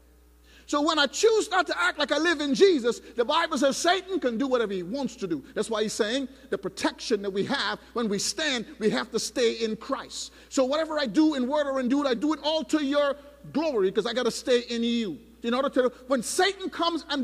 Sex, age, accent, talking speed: male, 50-69, American, 245 wpm